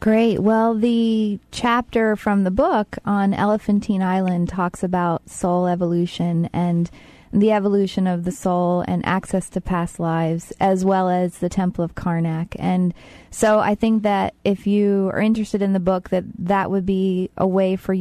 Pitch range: 180-215 Hz